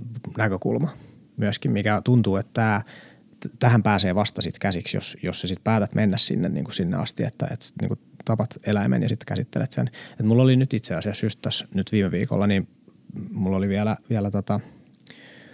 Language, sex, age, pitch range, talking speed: Finnish, male, 30-49, 100-125 Hz, 185 wpm